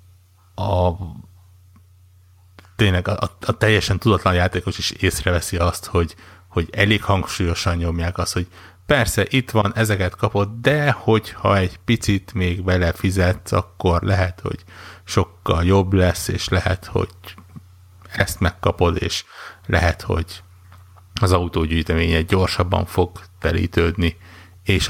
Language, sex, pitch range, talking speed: Hungarian, male, 90-100 Hz, 120 wpm